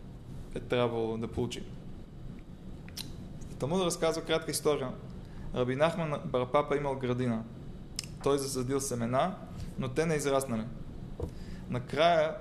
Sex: male